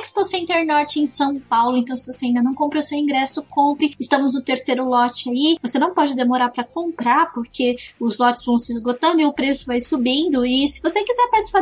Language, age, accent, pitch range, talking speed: Portuguese, 20-39, Brazilian, 255-335 Hz, 215 wpm